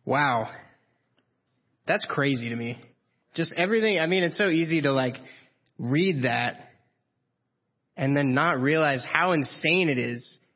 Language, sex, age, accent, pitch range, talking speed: English, male, 30-49, American, 140-190 Hz, 135 wpm